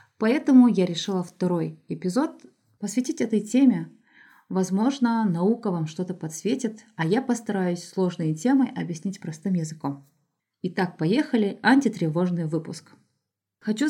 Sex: female